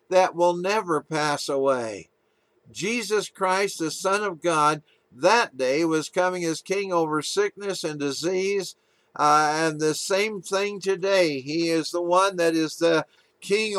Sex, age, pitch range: male, 50-69, 155-185 Hz